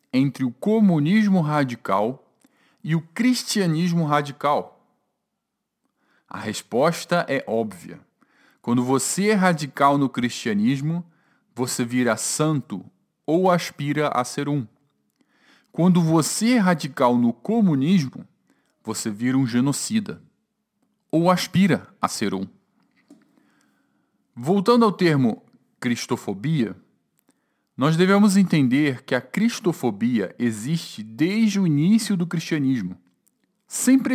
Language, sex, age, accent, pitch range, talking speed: Portuguese, male, 40-59, Brazilian, 130-200 Hz, 100 wpm